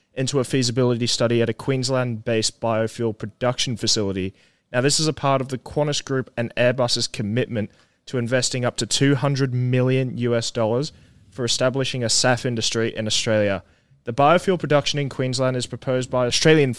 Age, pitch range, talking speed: 20-39, 115-135 Hz, 170 wpm